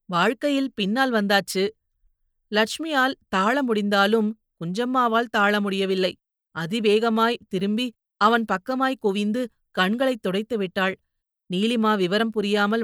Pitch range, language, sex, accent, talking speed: 195-235 Hz, Tamil, female, native, 95 wpm